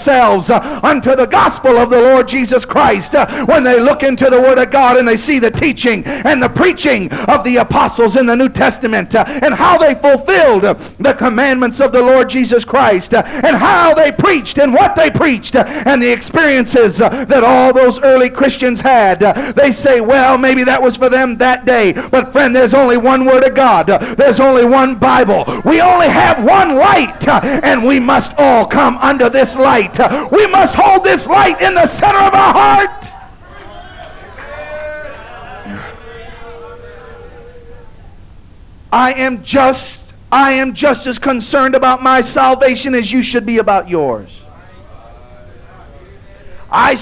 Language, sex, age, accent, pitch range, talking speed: English, male, 50-69, American, 240-275 Hz, 155 wpm